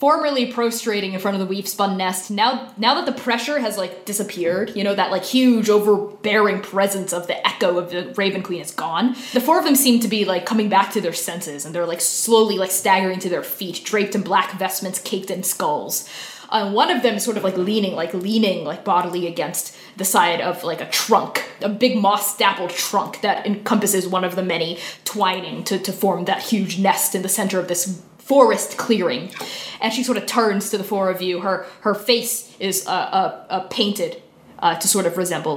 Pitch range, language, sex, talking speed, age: 185-245 Hz, English, female, 220 wpm, 20-39